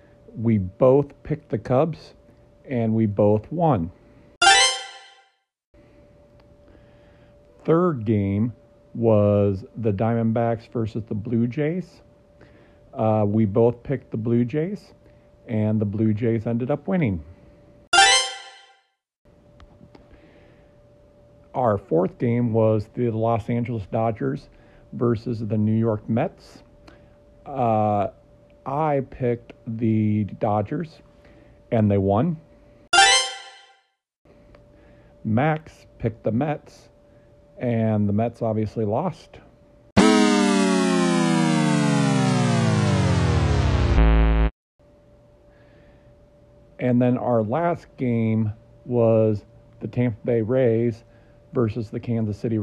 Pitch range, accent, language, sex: 105-125 Hz, American, English, male